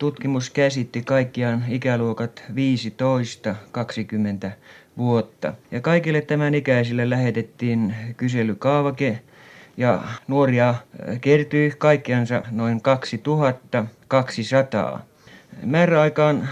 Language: Finnish